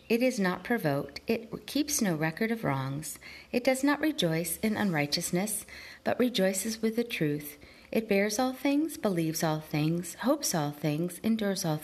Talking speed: 165 wpm